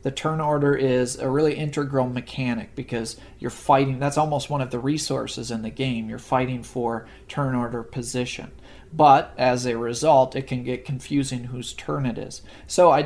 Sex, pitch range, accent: male, 120-145 Hz, American